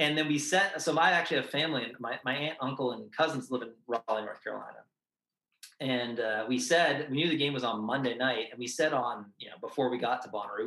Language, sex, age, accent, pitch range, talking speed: English, male, 20-39, American, 120-145 Hz, 240 wpm